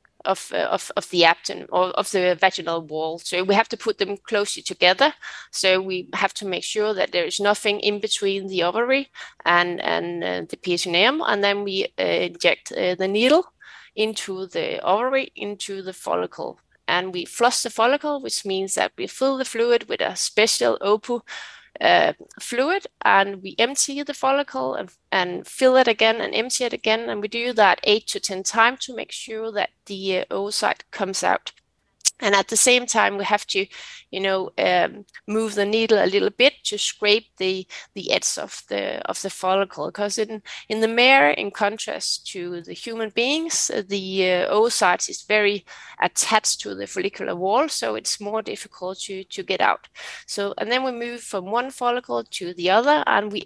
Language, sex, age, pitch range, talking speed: Danish, female, 20-39, 190-245 Hz, 190 wpm